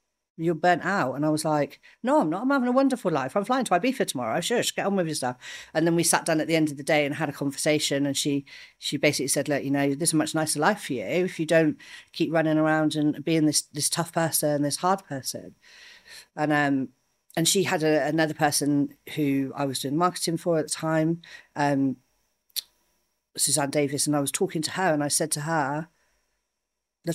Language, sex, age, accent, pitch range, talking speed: English, female, 40-59, British, 150-180 Hz, 230 wpm